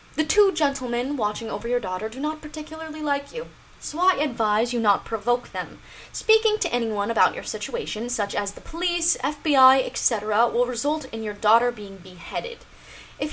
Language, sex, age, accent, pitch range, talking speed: English, female, 10-29, American, 215-310 Hz, 175 wpm